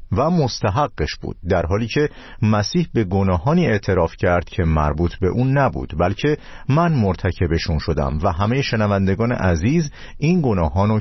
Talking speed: 140 wpm